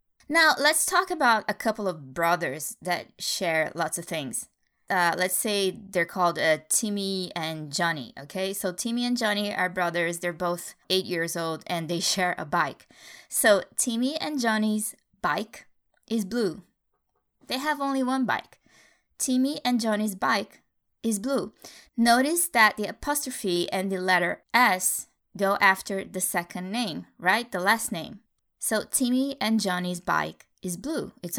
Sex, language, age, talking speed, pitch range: female, English, 20-39, 155 wpm, 175-225 Hz